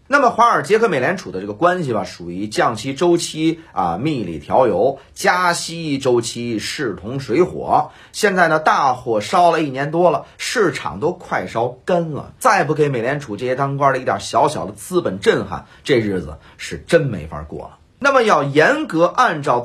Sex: male